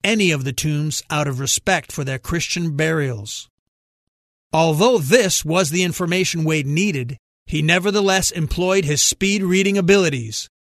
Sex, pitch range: male, 140-190 Hz